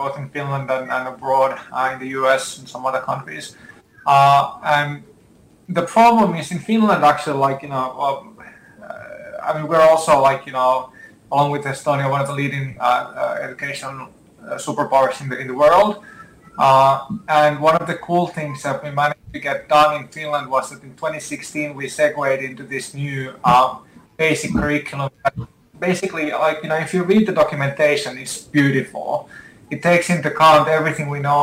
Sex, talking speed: male, 185 wpm